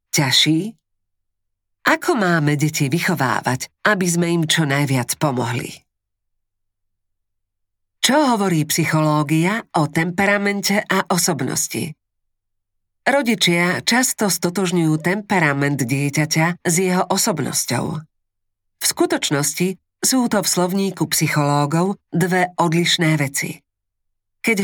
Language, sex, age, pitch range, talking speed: Slovak, female, 40-59, 145-200 Hz, 90 wpm